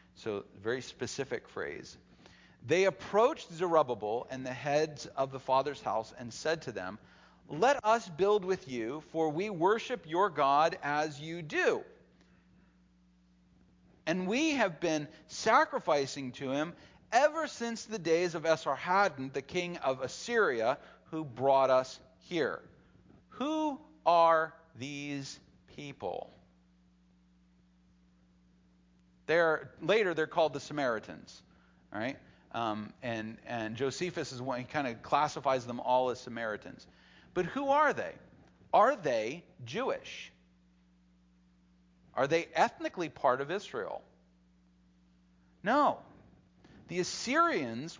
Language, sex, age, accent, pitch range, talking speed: English, male, 40-59, American, 110-175 Hz, 115 wpm